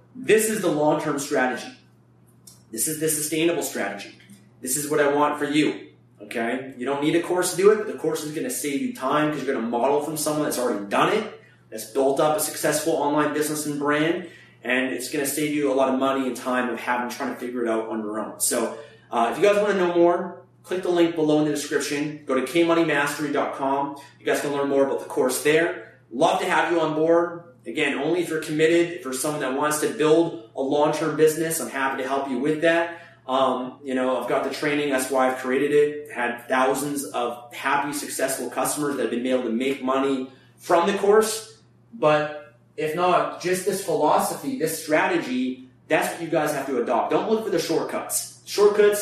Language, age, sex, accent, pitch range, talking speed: English, 30-49, male, American, 130-165 Hz, 220 wpm